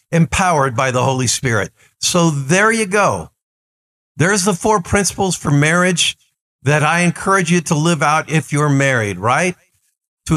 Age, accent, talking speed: 50-69, American, 155 wpm